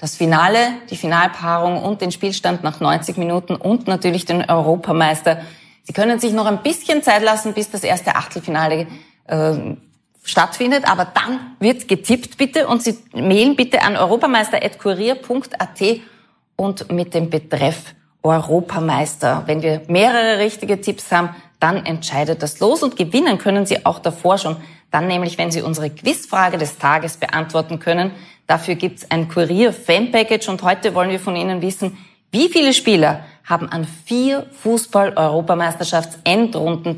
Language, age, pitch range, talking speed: German, 20-39, 165-215 Hz, 145 wpm